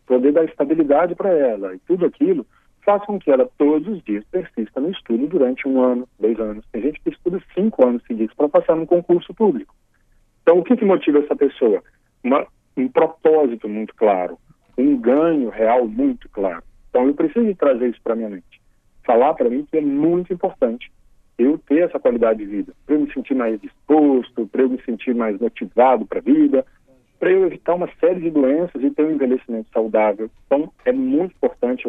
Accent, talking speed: Brazilian, 200 wpm